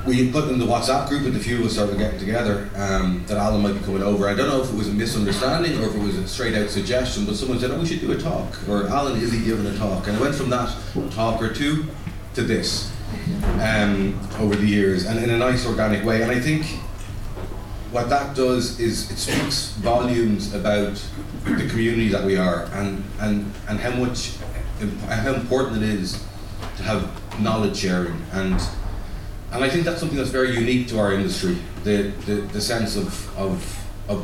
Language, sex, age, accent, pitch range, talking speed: English, male, 30-49, Irish, 100-120 Hz, 215 wpm